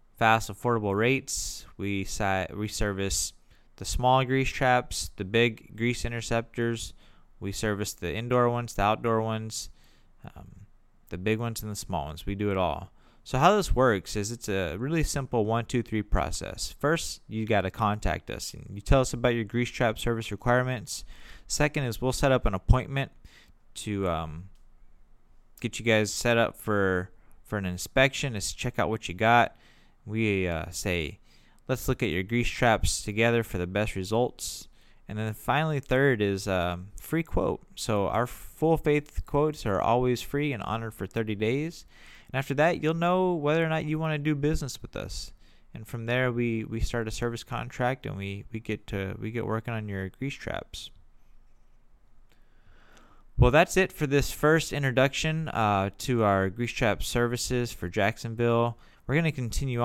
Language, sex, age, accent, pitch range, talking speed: English, male, 20-39, American, 100-125 Hz, 175 wpm